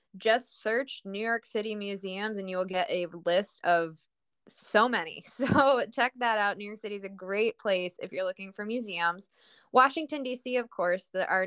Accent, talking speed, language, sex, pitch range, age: American, 195 wpm, English, female, 180-230 Hz, 20-39